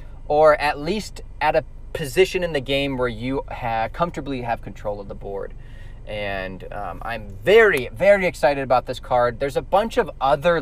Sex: male